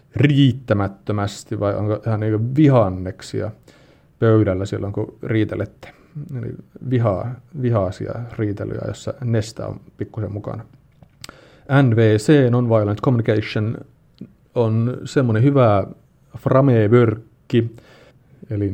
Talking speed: 85 wpm